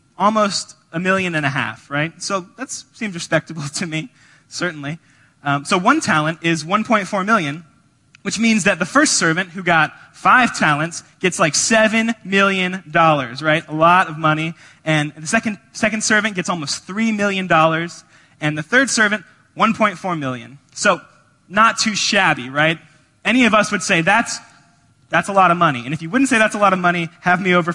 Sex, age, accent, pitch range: male, 20-39, American, 150-205 Hz